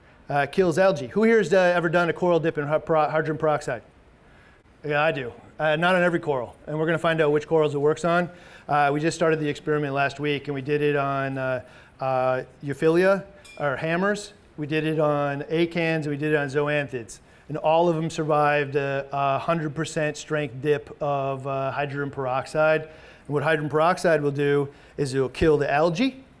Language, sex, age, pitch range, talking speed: English, male, 30-49, 145-175 Hz, 205 wpm